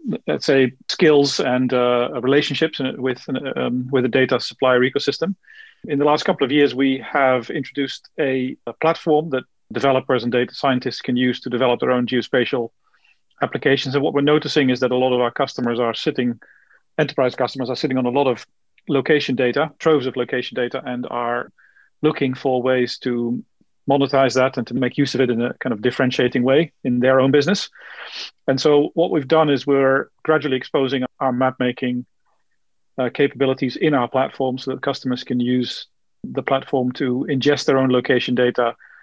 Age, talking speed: 40-59, 185 wpm